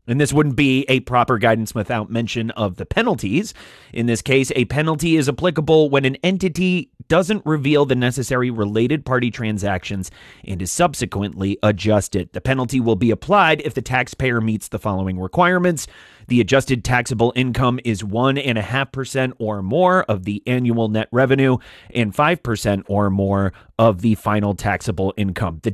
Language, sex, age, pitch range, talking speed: English, male, 30-49, 105-140 Hz, 160 wpm